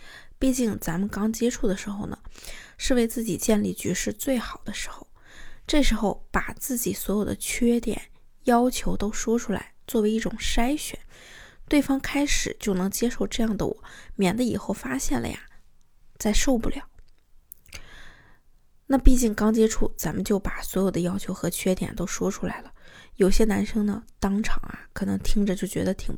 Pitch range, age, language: 195-235 Hz, 20-39, Chinese